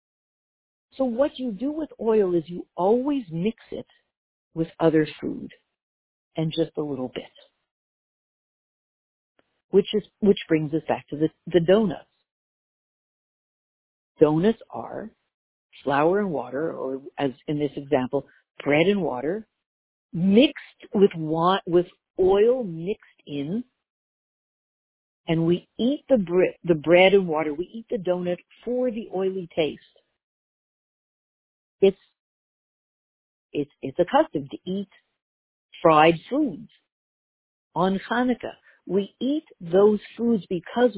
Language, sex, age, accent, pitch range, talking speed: English, female, 50-69, American, 165-230 Hz, 120 wpm